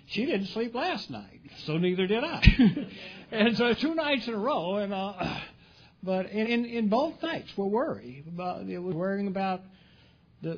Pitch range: 140-190 Hz